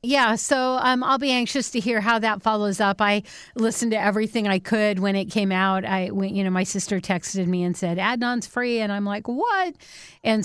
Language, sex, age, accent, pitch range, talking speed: English, female, 40-59, American, 185-220 Hz, 225 wpm